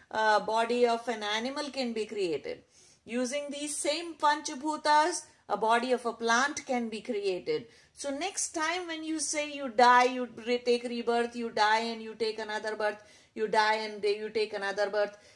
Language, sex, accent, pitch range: English, female, Indian, 230-315 Hz